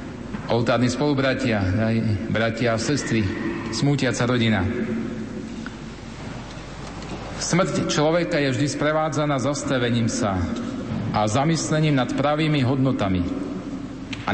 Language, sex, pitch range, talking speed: Slovak, male, 120-150 Hz, 85 wpm